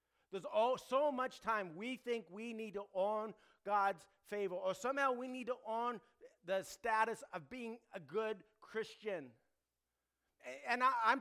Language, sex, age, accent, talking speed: English, male, 50-69, American, 155 wpm